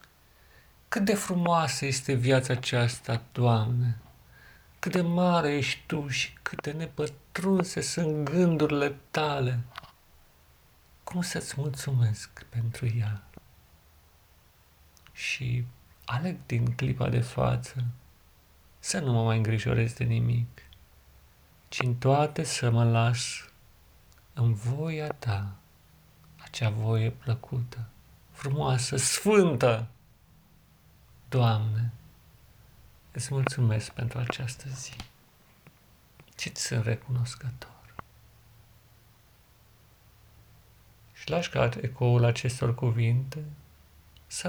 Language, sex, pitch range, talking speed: Romanian, male, 105-130 Hz, 90 wpm